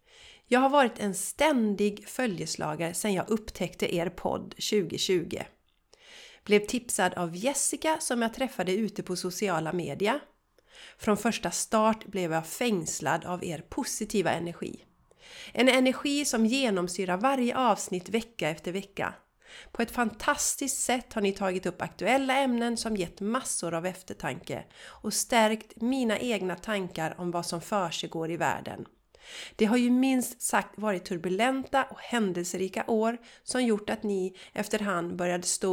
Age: 30-49